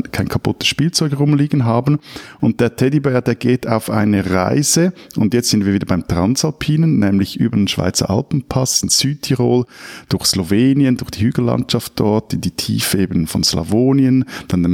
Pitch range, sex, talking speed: 95-130 Hz, male, 165 wpm